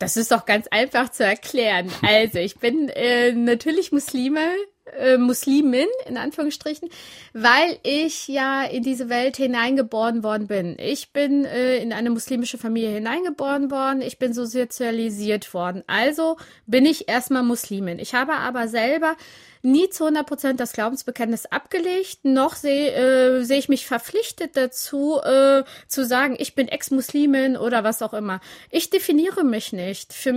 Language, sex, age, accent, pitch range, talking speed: German, female, 30-49, German, 235-290 Hz, 155 wpm